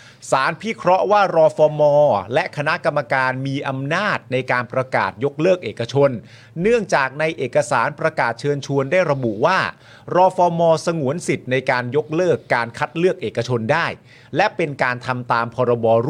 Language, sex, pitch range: Thai, male, 120-160 Hz